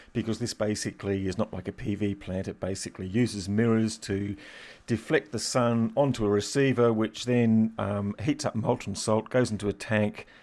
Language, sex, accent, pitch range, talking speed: English, male, British, 100-115 Hz, 180 wpm